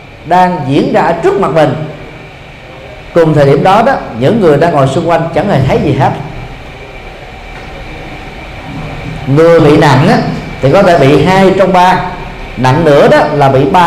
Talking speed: 165 wpm